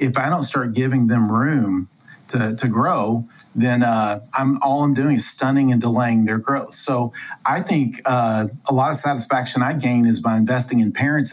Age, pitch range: 40-59, 115-140 Hz